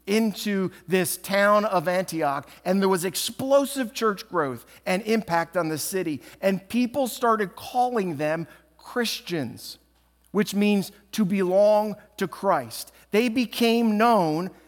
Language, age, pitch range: English, 50-69, 155-210 Hz